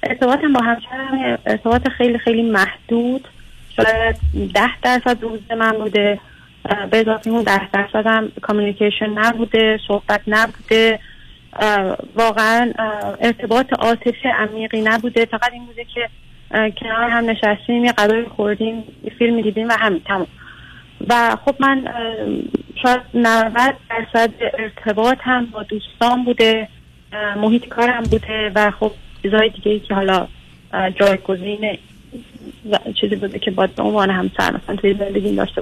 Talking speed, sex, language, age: 125 wpm, female, Persian, 40-59